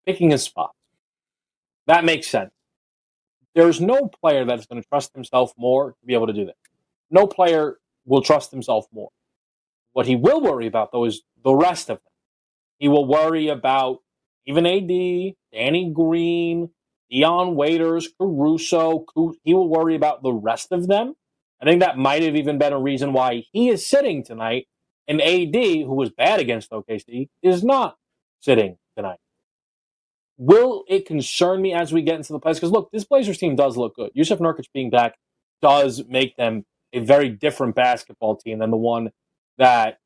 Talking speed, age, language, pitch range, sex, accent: 175 wpm, 30-49, English, 125-165 Hz, male, American